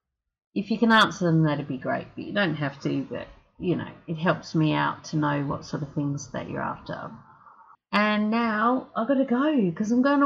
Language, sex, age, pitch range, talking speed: English, female, 40-59, 160-225 Hz, 230 wpm